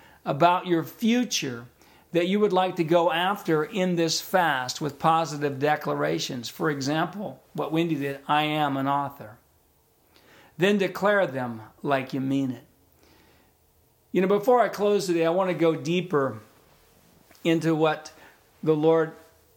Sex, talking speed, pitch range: male, 145 wpm, 140-170 Hz